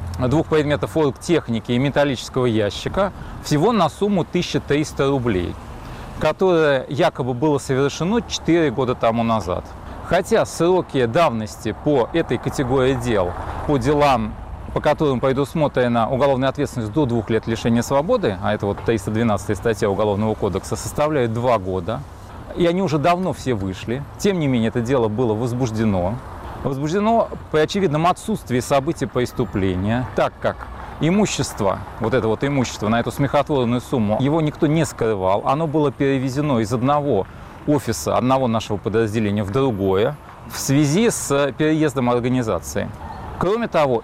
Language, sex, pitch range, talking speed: Russian, male, 110-150 Hz, 135 wpm